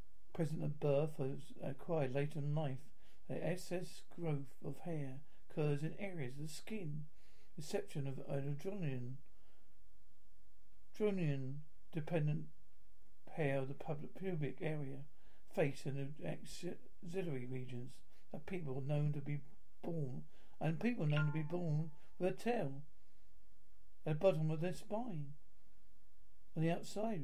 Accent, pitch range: British, 140-165 Hz